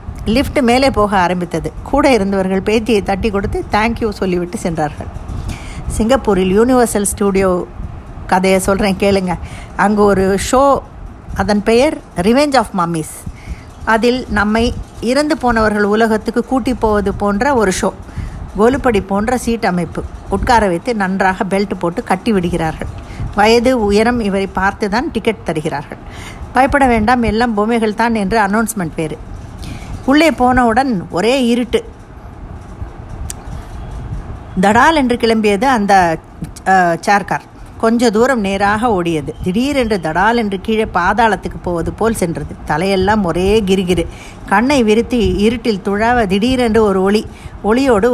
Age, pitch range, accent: 50-69, 190-235 Hz, native